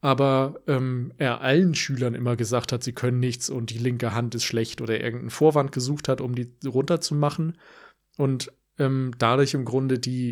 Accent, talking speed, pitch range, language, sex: German, 180 wpm, 120-145 Hz, German, male